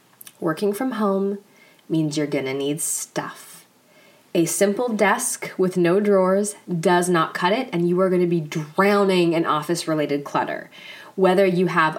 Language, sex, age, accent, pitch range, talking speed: English, female, 20-39, American, 170-215 Hz, 150 wpm